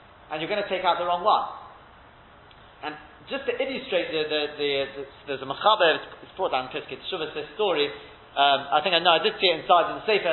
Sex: male